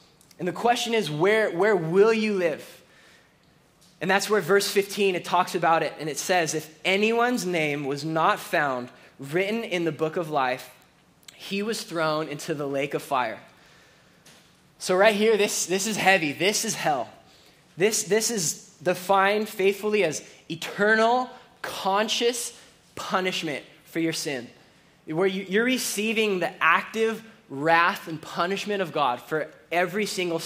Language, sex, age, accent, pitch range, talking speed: English, male, 20-39, American, 165-215 Hz, 150 wpm